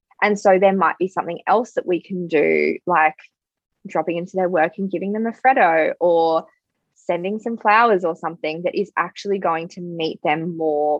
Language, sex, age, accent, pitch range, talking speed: English, female, 20-39, Australian, 160-195 Hz, 190 wpm